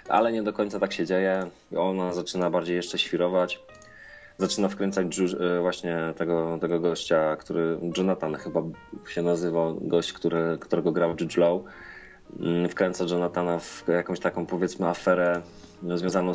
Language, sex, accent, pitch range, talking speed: Polish, male, native, 90-105 Hz, 135 wpm